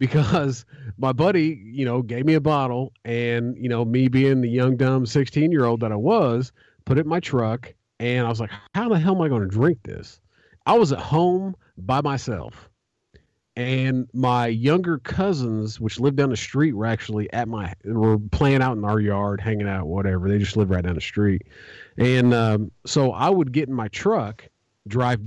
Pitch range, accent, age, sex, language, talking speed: 120-155 Hz, American, 40-59, male, English, 205 wpm